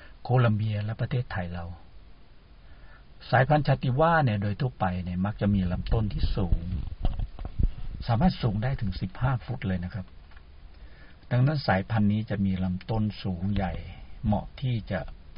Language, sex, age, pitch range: Thai, male, 60-79, 90-110 Hz